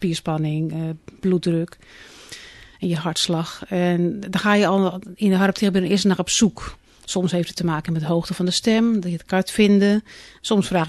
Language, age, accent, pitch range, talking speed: Dutch, 40-59, Dutch, 175-210 Hz, 205 wpm